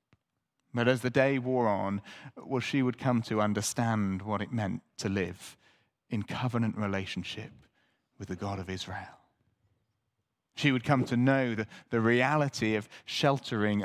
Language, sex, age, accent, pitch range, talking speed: English, male, 30-49, British, 110-155 Hz, 150 wpm